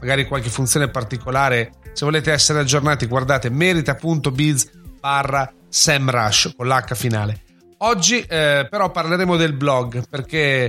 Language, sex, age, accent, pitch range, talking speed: Italian, male, 40-59, native, 125-165 Hz, 125 wpm